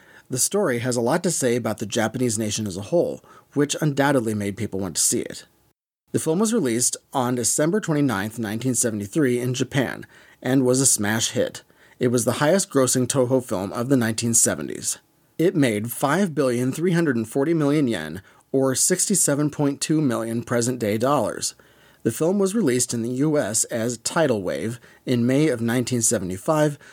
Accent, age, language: American, 30-49, English